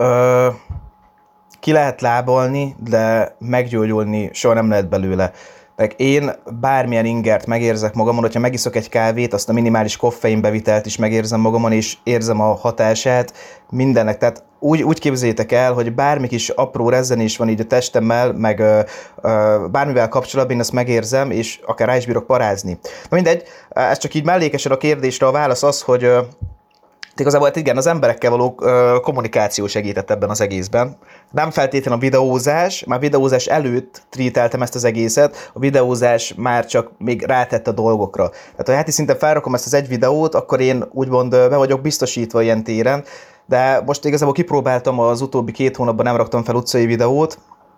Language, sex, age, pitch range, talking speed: Hungarian, male, 20-39, 110-135 Hz, 160 wpm